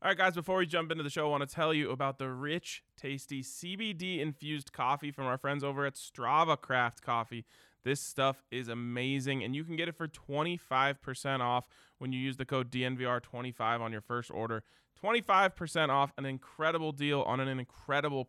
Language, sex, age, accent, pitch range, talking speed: English, male, 20-39, American, 120-155 Hz, 190 wpm